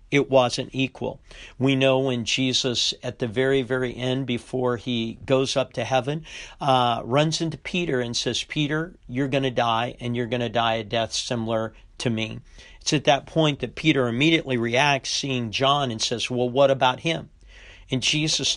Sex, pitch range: male, 120-145 Hz